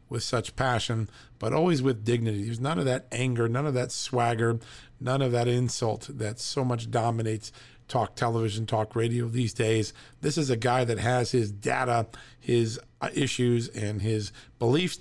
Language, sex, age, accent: English, male, 40-59, American